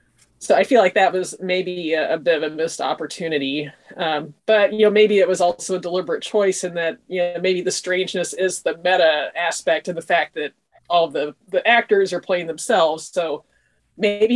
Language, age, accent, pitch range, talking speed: English, 30-49, American, 175-210 Hz, 205 wpm